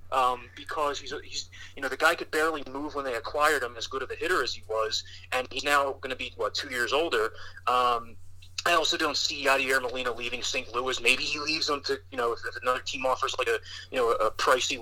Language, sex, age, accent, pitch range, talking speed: English, male, 30-49, American, 95-145 Hz, 245 wpm